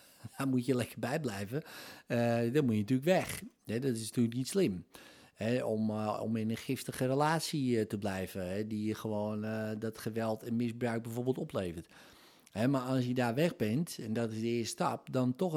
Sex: male